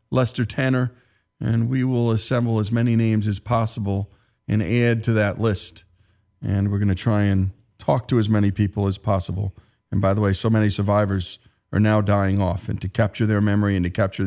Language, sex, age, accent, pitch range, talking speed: English, male, 40-59, American, 105-145 Hz, 200 wpm